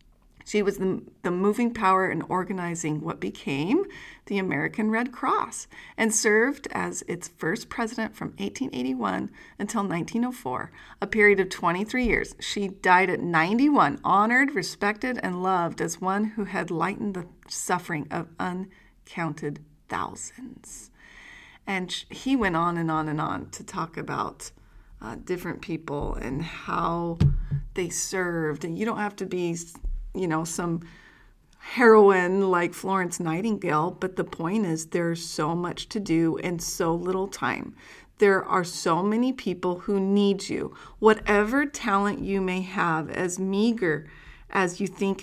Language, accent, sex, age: English, American, female, 30-49